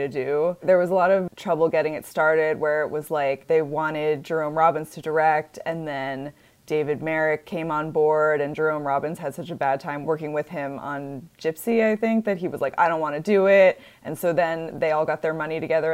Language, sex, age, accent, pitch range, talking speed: English, female, 20-39, American, 155-195 Hz, 235 wpm